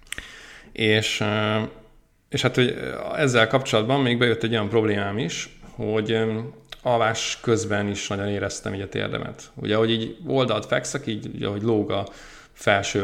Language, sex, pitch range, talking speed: English, male, 100-115 Hz, 140 wpm